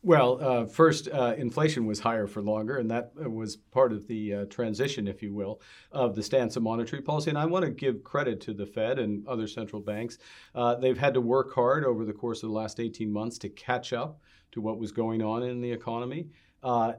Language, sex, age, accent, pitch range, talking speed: English, male, 50-69, American, 110-130 Hz, 230 wpm